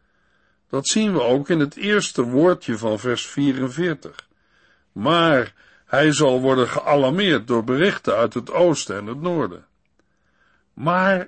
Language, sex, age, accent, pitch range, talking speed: Dutch, male, 60-79, Dutch, 125-175 Hz, 135 wpm